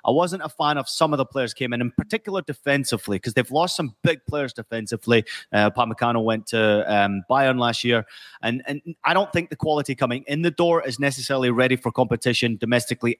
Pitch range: 115-145 Hz